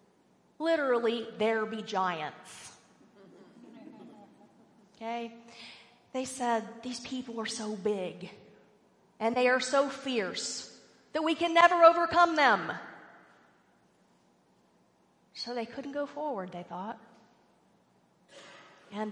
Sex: female